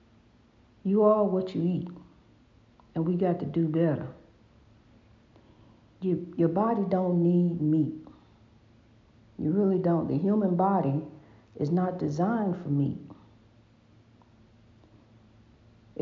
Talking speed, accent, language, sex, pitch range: 100 wpm, American, English, female, 115-180 Hz